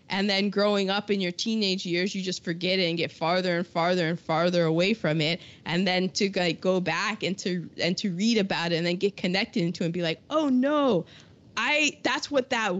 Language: English